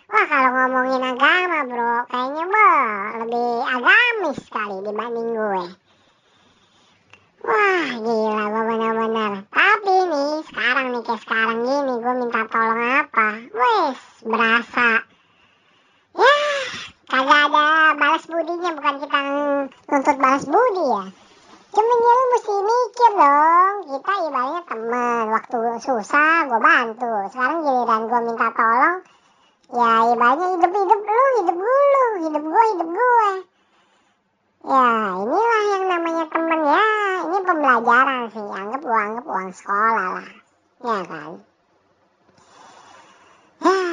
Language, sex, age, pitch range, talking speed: Indonesian, male, 20-39, 225-330 Hz, 120 wpm